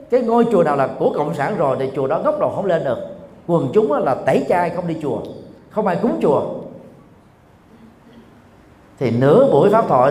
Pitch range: 135-215 Hz